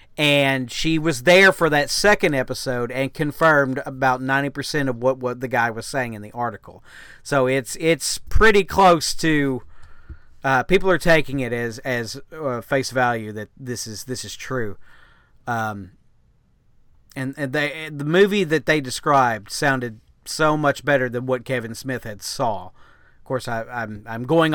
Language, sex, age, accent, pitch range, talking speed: English, male, 40-59, American, 120-145 Hz, 170 wpm